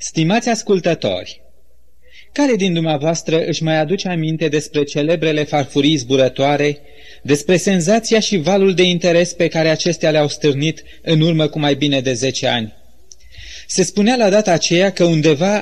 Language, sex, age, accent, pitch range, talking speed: Romanian, male, 30-49, native, 145-195 Hz, 150 wpm